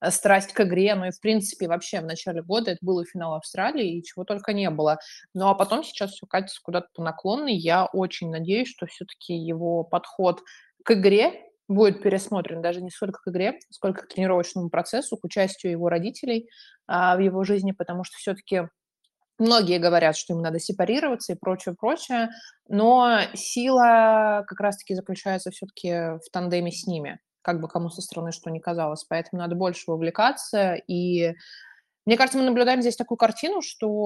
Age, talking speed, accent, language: 20-39, 175 wpm, native, Russian